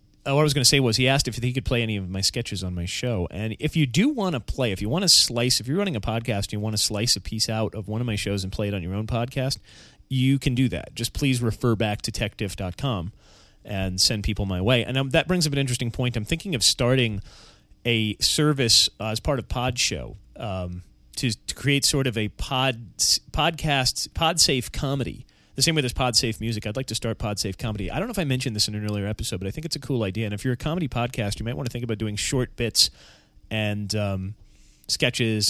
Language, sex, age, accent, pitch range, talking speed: English, male, 30-49, American, 105-135 Hz, 255 wpm